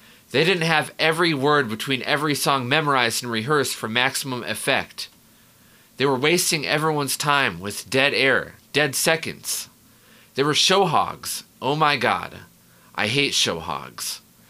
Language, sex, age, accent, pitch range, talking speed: English, male, 30-49, American, 110-150 Hz, 145 wpm